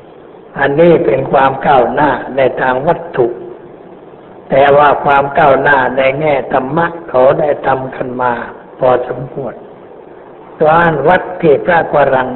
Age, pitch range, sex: 60-79, 135-170 Hz, male